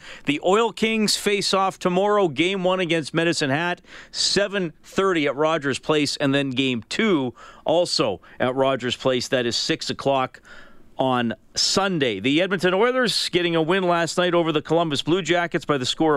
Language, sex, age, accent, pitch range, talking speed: English, male, 40-59, American, 135-175 Hz, 165 wpm